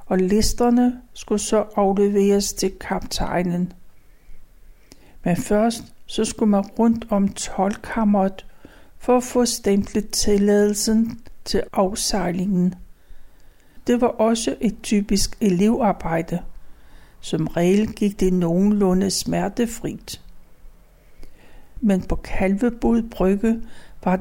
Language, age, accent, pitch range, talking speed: Danish, 60-79, native, 185-225 Hz, 95 wpm